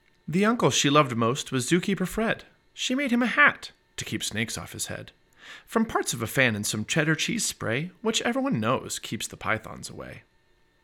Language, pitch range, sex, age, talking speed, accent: English, 110-175 Hz, male, 30-49, 200 wpm, American